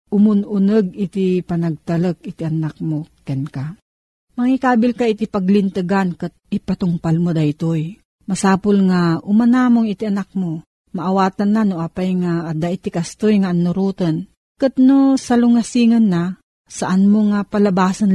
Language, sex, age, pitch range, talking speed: Filipino, female, 40-59, 175-215 Hz, 130 wpm